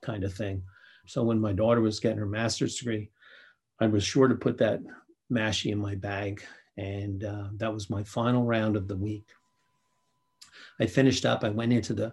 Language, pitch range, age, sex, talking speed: English, 100-120 Hz, 50-69, male, 195 wpm